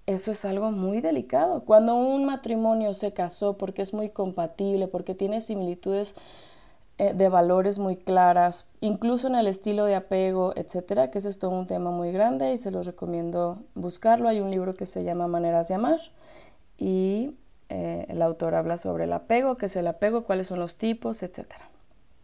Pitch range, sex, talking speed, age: 185-235 Hz, female, 180 wpm, 20-39